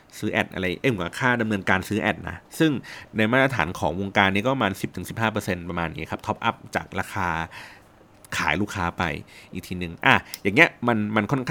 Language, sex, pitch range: Thai, male, 95-120 Hz